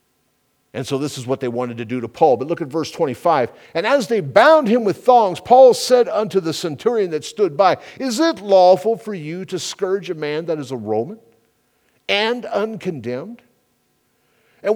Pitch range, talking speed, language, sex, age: 135-215 Hz, 190 wpm, English, male, 50-69